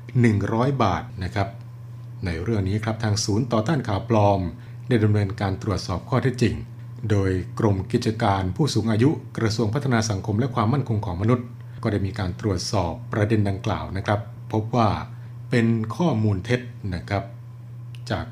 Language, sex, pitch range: Thai, male, 105-120 Hz